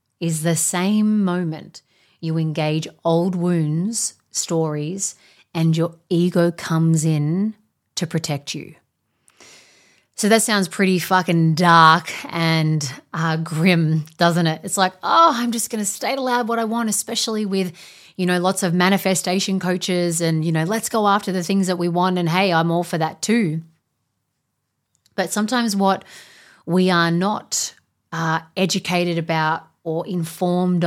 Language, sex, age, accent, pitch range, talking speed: English, female, 30-49, Australian, 165-190 Hz, 150 wpm